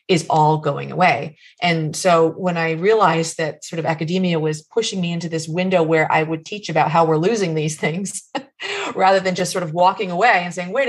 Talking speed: 215 wpm